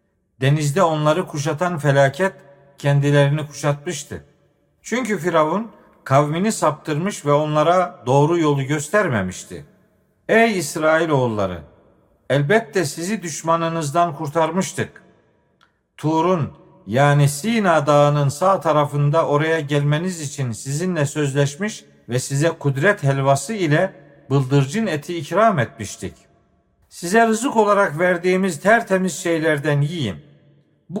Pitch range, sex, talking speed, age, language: 140-180 Hz, male, 95 wpm, 50-69, Turkish